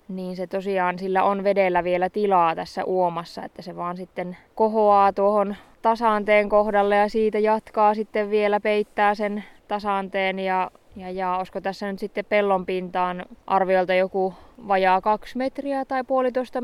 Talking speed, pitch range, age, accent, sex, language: 150 wpm, 185-215 Hz, 20-39, native, female, Finnish